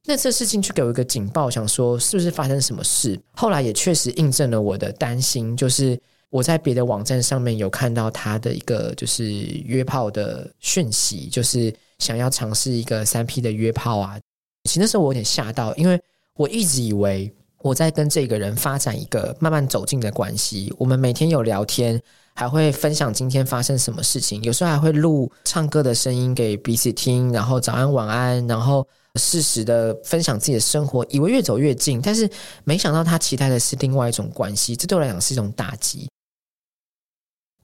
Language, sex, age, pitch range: Chinese, male, 20-39, 115-145 Hz